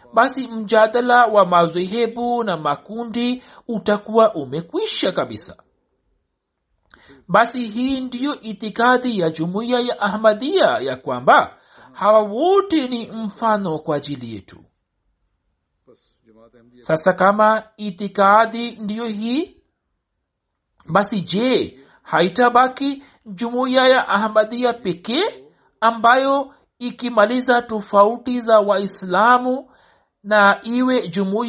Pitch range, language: 175-235 Hz, Swahili